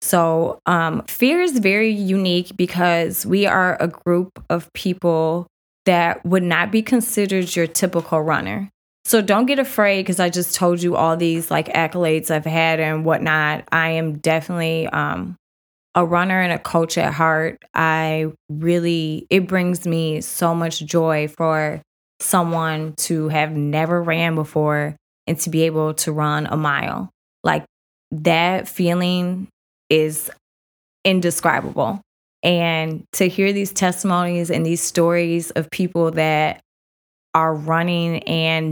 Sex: female